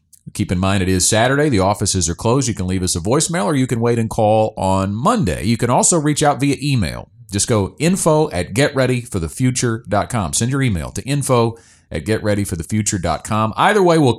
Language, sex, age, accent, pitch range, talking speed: English, male, 40-59, American, 90-125 Hz, 195 wpm